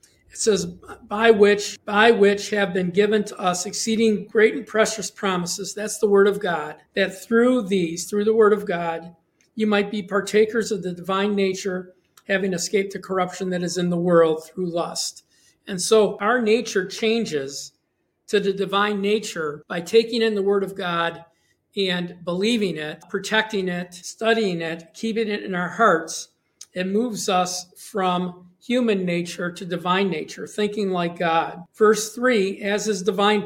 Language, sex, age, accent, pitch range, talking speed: English, male, 50-69, American, 180-215 Hz, 165 wpm